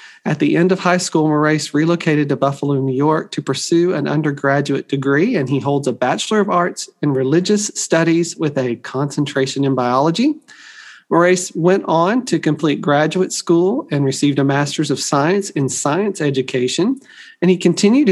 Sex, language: male, English